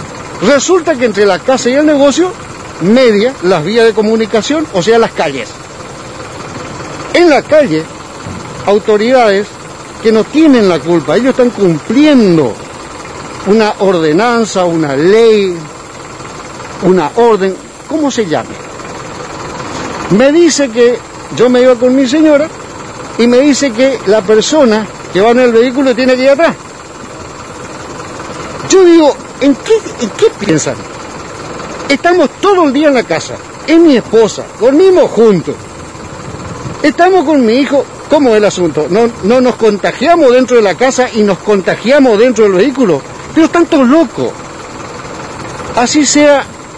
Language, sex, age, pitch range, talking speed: Spanish, male, 50-69, 205-280 Hz, 140 wpm